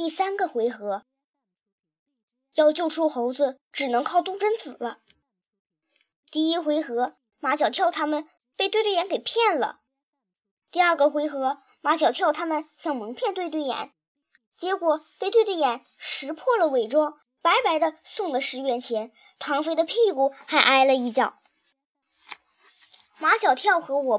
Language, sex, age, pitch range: Chinese, male, 20-39, 255-340 Hz